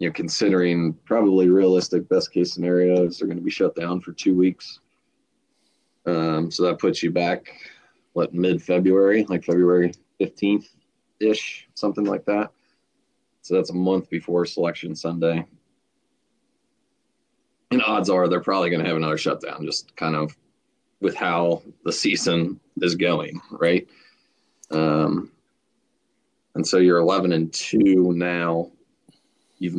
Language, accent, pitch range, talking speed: English, American, 85-90 Hz, 135 wpm